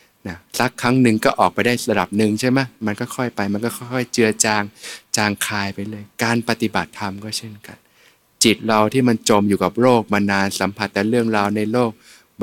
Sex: male